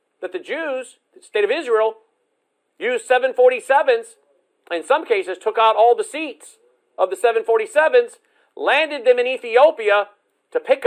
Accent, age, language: American, 50-69, English